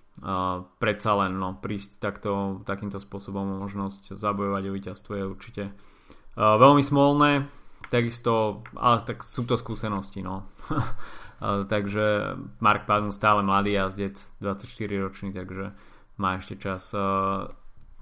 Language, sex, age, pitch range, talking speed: Slovak, male, 20-39, 100-115 Hz, 125 wpm